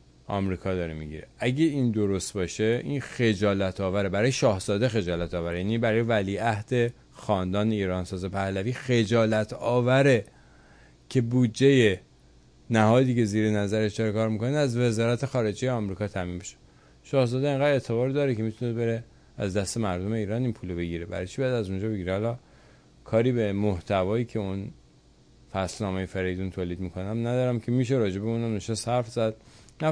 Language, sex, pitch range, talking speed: English, male, 95-120 Hz, 155 wpm